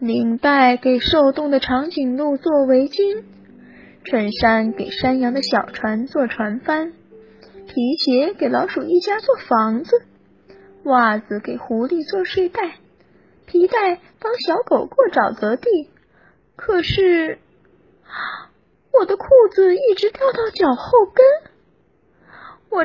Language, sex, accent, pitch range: Chinese, female, native, 240-355 Hz